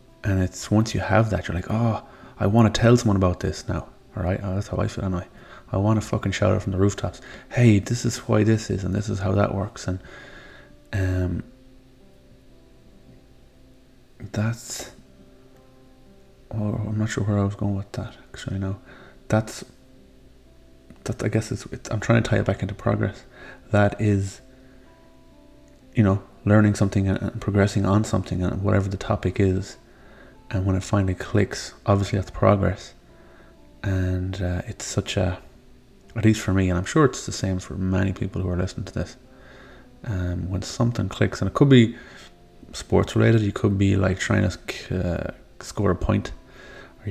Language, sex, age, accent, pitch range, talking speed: English, male, 20-39, Irish, 95-110 Hz, 185 wpm